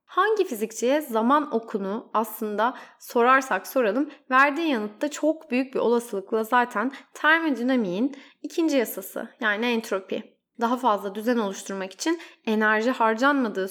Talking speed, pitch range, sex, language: 115 wpm, 220-290 Hz, female, Turkish